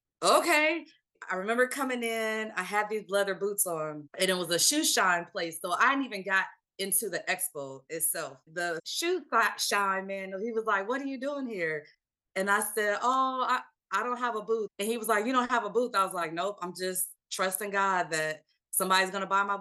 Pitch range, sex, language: 170-220 Hz, female, English